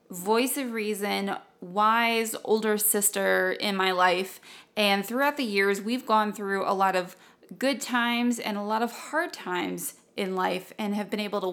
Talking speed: 175 wpm